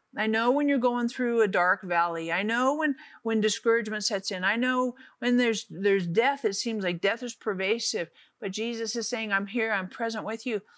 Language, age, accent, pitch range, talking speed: English, 50-69, American, 200-250 Hz, 210 wpm